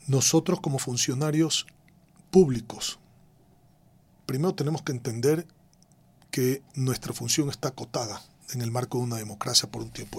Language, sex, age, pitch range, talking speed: Spanish, male, 40-59, 130-165 Hz, 130 wpm